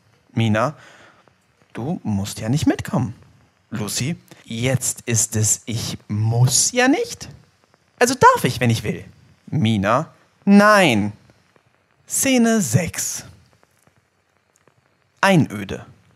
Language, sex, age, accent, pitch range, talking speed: German, male, 30-49, German, 105-155 Hz, 95 wpm